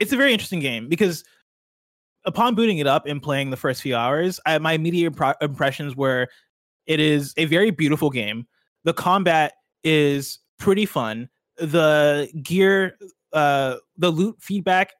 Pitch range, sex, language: 130-180 Hz, male, English